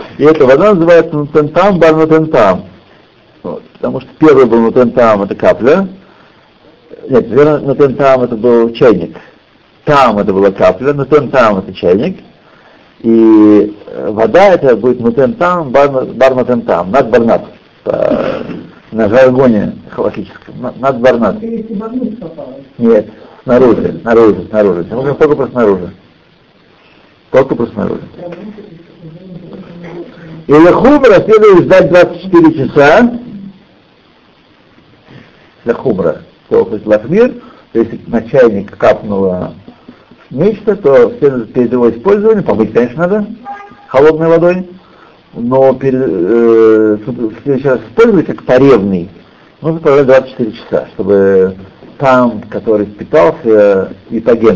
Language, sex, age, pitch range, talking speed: Russian, male, 60-79, 120-190 Hz, 105 wpm